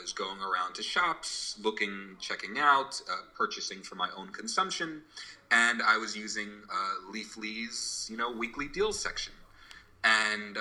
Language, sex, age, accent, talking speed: English, male, 30-49, American, 155 wpm